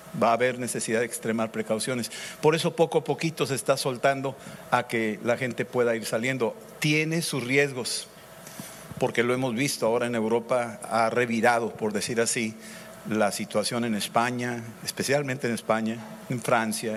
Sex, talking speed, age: male, 165 wpm, 50-69